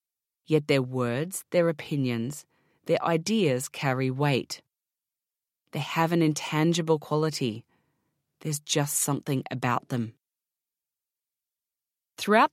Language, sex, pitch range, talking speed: English, female, 135-180 Hz, 95 wpm